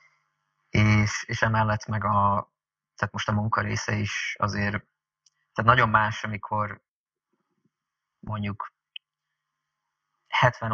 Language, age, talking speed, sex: Hungarian, 20-39, 100 wpm, male